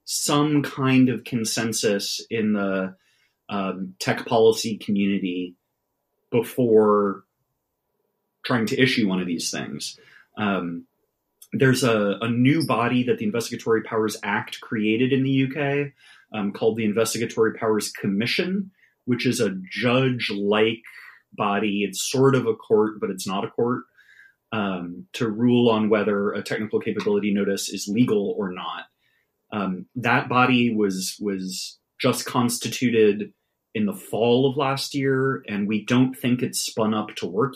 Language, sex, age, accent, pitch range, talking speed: English, male, 30-49, American, 105-135 Hz, 140 wpm